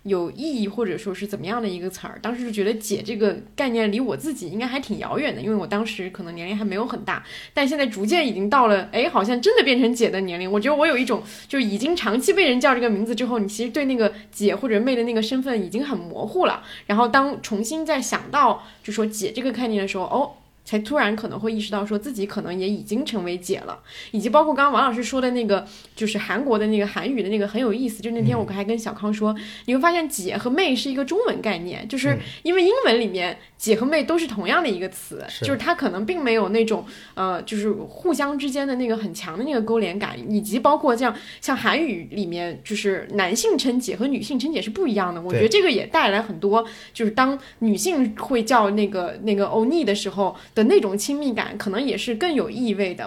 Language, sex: Chinese, female